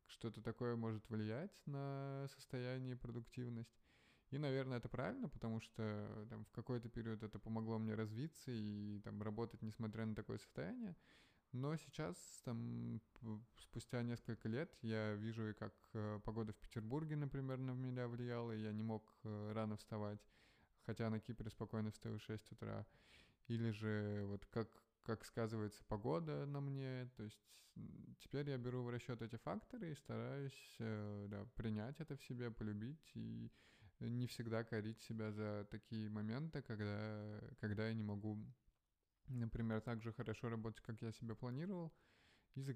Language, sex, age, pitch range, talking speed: Russian, male, 20-39, 110-125 Hz, 145 wpm